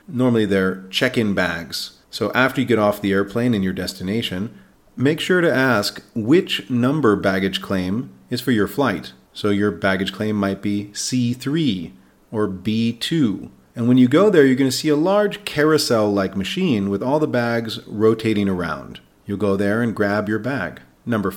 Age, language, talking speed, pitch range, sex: 40-59, English, 175 wpm, 100-125 Hz, male